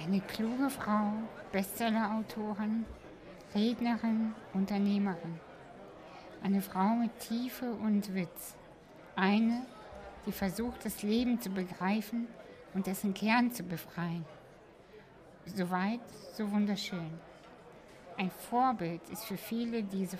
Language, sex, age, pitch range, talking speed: German, female, 60-79, 185-225 Hz, 100 wpm